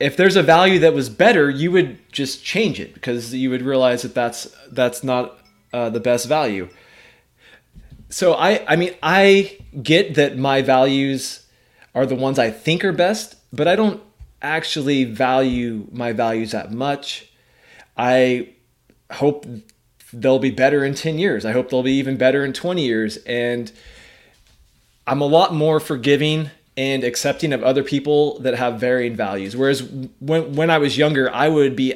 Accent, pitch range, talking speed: American, 125-155 Hz, 170 wpm